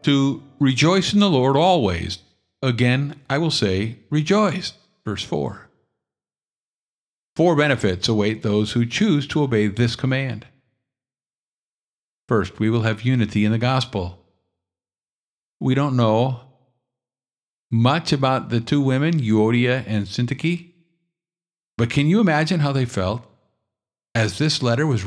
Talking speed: 125 wpm